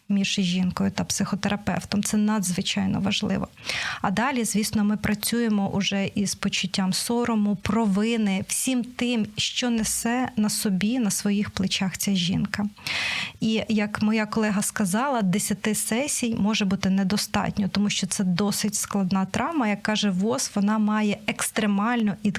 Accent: native